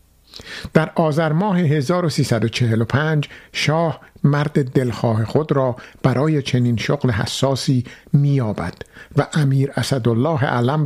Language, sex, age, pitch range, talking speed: Persian, male, 50-69, 120-155 Hz, 100 wpm